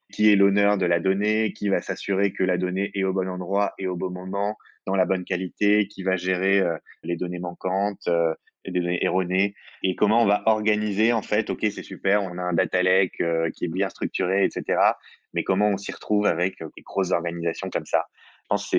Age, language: 20-39, French